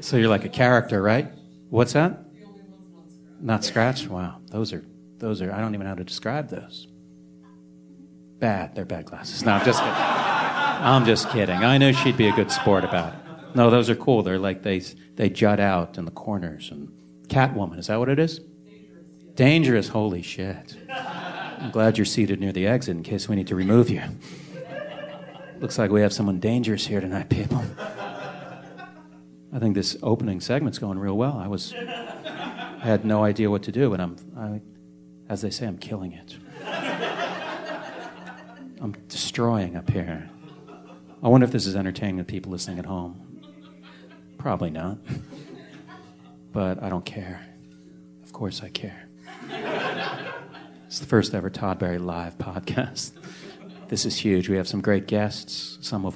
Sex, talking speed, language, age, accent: male, 170 wpm, English, 40-59, American